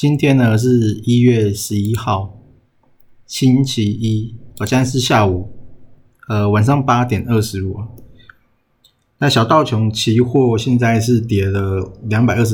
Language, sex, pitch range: Chinese, male, 105-125 Hz